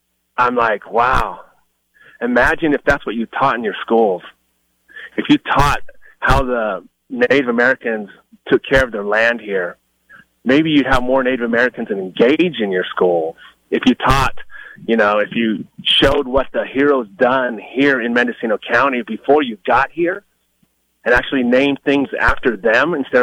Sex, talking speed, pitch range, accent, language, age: male, 160 wpm, 105-145 Hz, American, English, 30-49